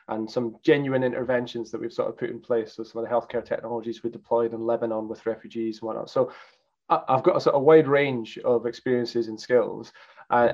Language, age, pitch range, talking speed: English, 20-39, 115-130 Hz, 215 wpm